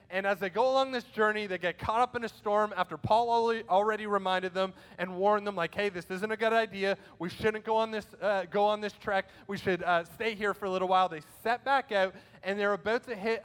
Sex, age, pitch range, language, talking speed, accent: male, 20-39, 170-215 Hz, English, 255 wpm, American